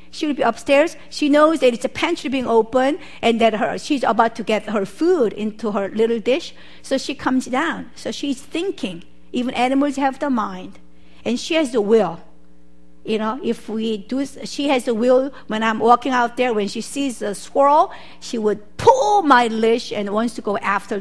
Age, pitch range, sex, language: 50-69, 195-255 Hz, female, Korean